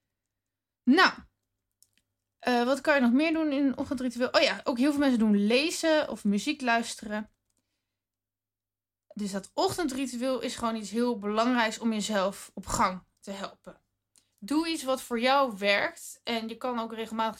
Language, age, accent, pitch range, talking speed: Dutch, 20-39, Dutch, 195-255 Hz, 160 wpm